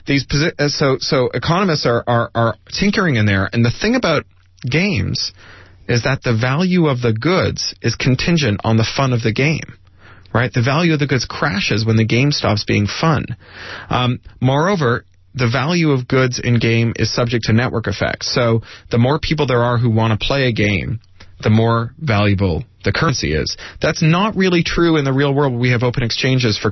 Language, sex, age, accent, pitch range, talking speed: English, male, 30-49, American, 100-130 Hz, 195 wpm